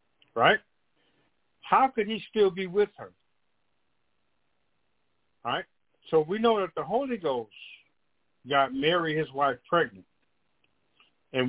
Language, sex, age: English, male, 50-69